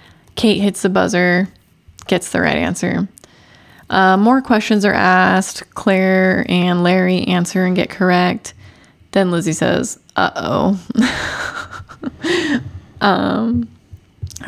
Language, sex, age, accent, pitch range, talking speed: English, female, 20-39, American, 180-225 Hz, 105 wpm